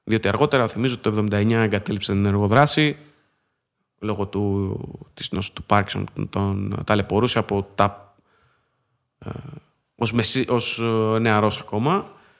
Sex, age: male, 20-39